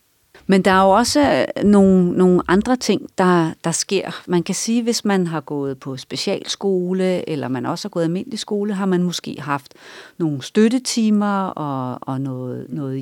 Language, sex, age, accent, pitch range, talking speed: Danish, female, 40-59, native, 165-210 Hz, 180 wpm